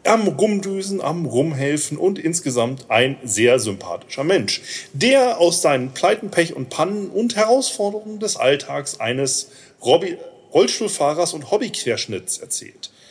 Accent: German